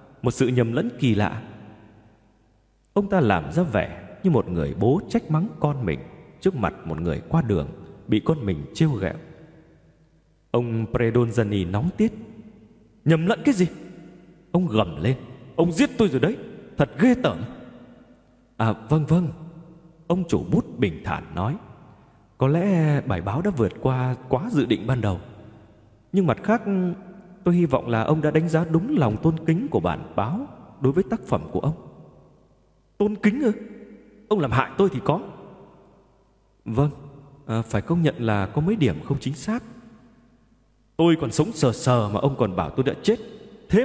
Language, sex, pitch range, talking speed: Vietnamese, male, 120-180 Hz, 175 wpm